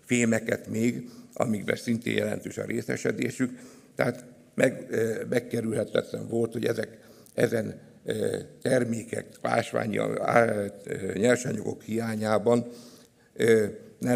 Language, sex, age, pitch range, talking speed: Hungarian, male, 60-79, 115-130 Hz, 75 wpm